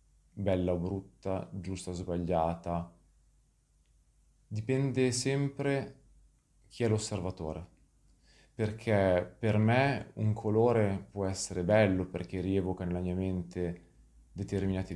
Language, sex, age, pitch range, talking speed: Italian, male, 30-49, 90-110 Hz, 100 wpm